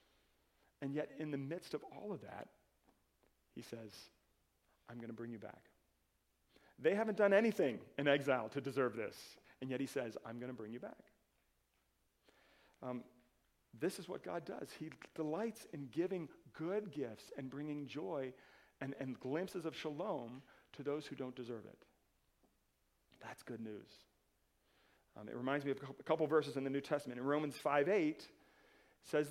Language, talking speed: English, 165 wpm